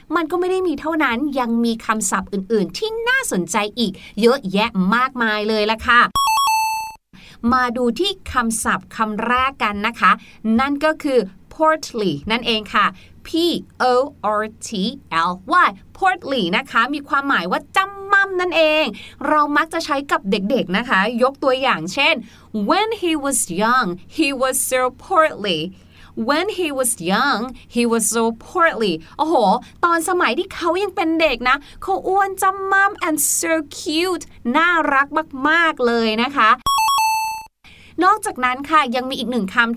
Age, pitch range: 30-49, 235-330 Hz